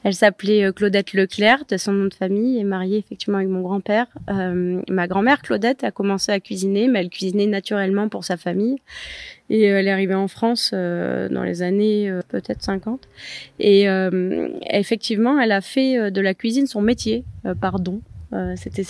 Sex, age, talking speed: female, 20-39, 185 wpm